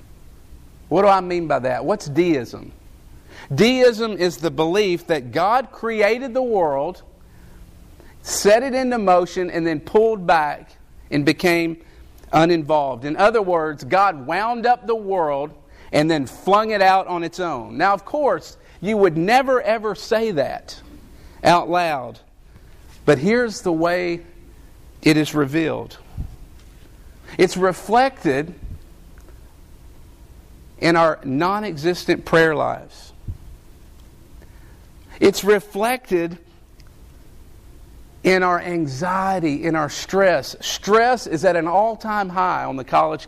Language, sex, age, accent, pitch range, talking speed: English, male, 50-69, American, 145-205 Hz, 120 wpm